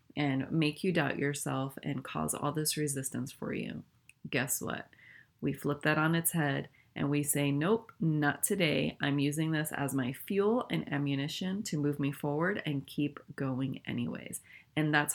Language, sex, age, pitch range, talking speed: English, female, 30-49, 140-180 Hz, 175 wpm